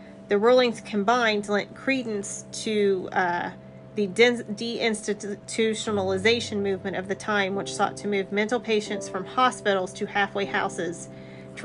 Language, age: English, 40-59